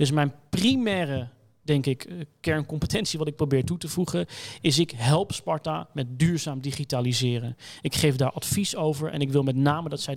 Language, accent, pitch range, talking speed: Dutch, Dutch, 130-160 Hz, 185 wpm